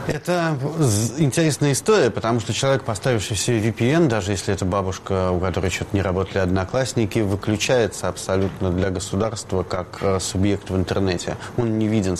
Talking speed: 145 wpm